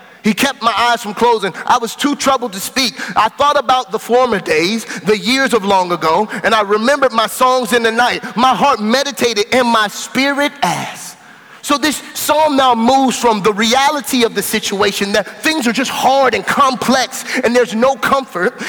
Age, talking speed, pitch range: 30-49, 195 wpm, 190-260 Hz